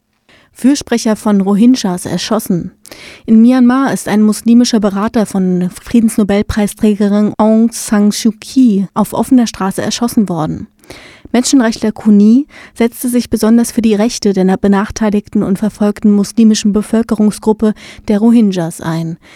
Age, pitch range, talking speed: 30-49, 200-230 Hz, 120 wpm